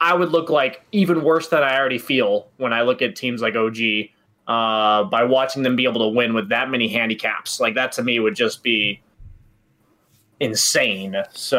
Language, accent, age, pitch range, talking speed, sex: English, American, 20-39, 115-160 Hz, 195 wpm, male